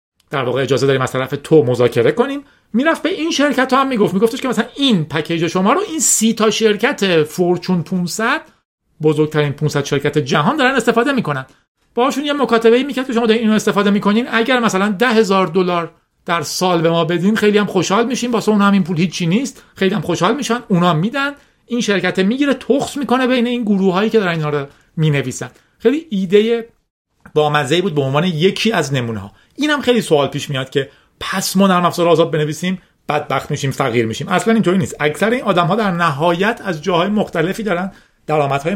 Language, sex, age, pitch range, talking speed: Persian, male, 40-59, 150-225 Hz, 170 wpm